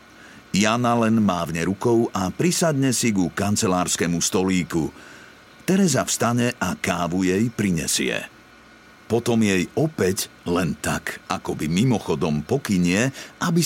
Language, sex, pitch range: Slovak, male, 95-130 Hz